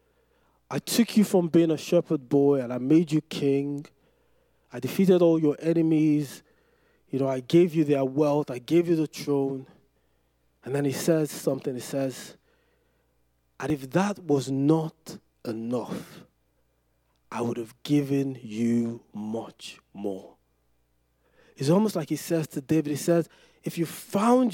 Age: 20-39